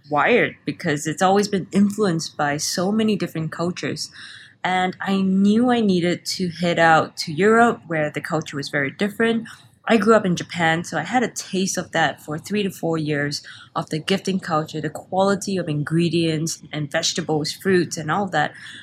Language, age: English, 20-39